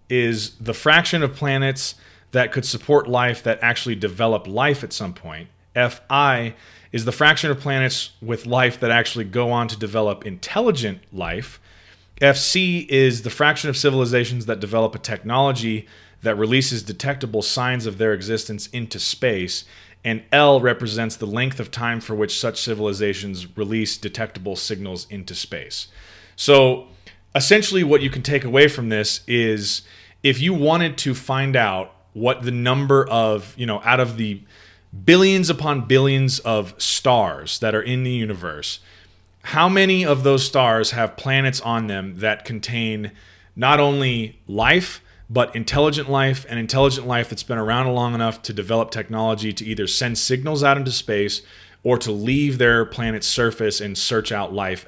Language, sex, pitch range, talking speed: English, male, 105-135 Hz, 160 wpm